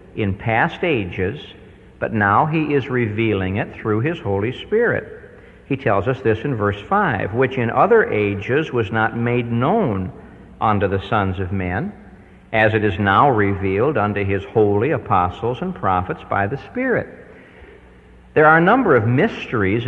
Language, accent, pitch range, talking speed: English, American, 100-145 Hz, 160 wpm